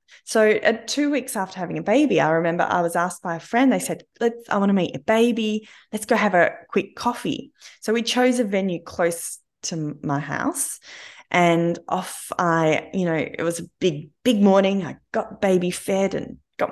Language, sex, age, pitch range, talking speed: English, female, 20-39, 165-225 Hz, 205 wpm